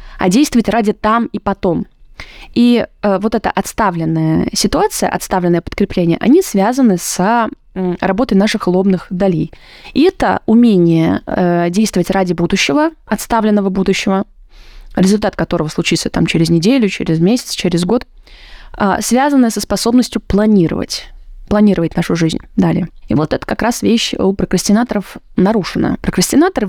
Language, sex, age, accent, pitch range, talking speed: Russian, female, 20-39, native, 180-235 Hz, 130 wpm